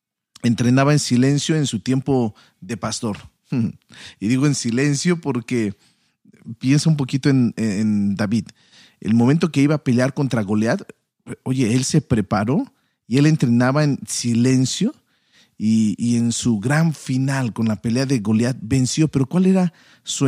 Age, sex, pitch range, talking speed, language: 40-59, male, 120-170 Hz, 155 wpm, Spanish